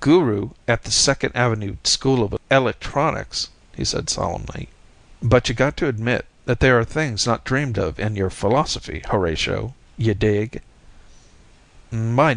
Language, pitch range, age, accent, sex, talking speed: English, 95-125 Hz, 50-69, American, male, 145 wpm